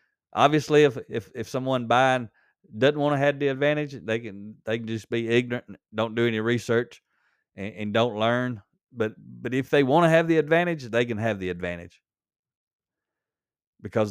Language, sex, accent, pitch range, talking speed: English, male, American, 100-130 Hz, 185 wpm